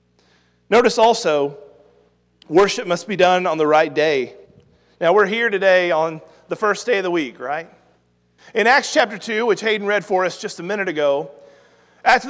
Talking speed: 175 wpm